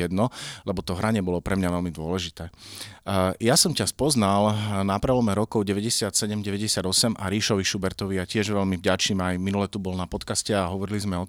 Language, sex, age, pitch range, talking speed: Slovak, male, 30-49, 95-110 Hz, 185 wpm